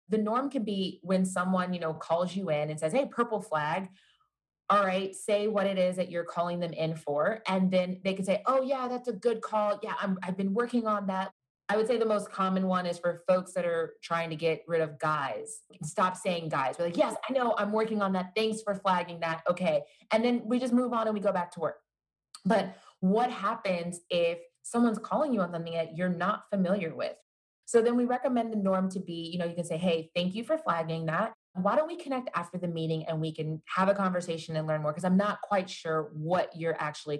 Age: 20-39